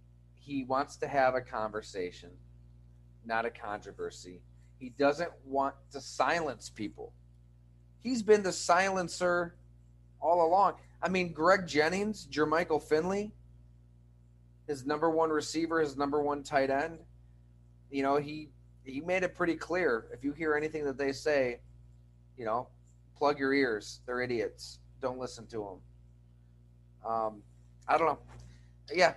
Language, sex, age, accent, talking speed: English, male, 30-49, American, 140 wpm